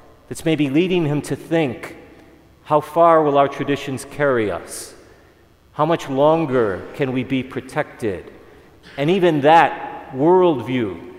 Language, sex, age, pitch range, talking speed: English, male, 40-59, 130-155 Hz, 130 wpm